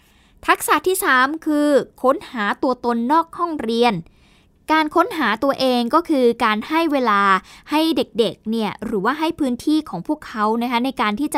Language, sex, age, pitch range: Thai, female, 10-29, 220-300 Hz